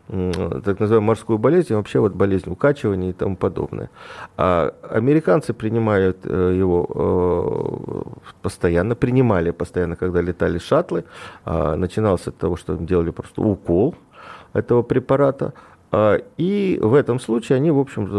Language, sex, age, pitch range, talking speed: Russian, male, 40-59, 90-120 Hz, 120 wpm